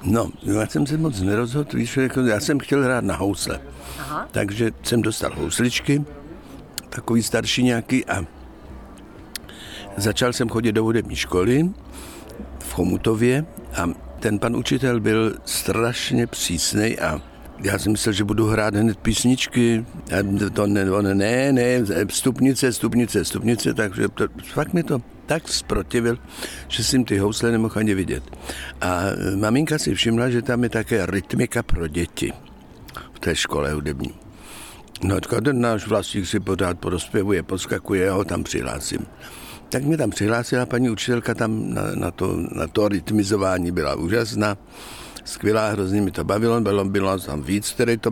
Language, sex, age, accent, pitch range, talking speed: Czech, male, 60-79, native, 100-120 Hz, 150 wpm